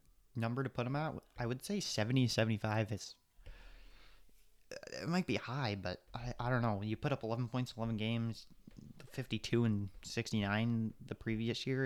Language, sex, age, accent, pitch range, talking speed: English, male, 20-39, American, 105-120 Hz, 165 wpm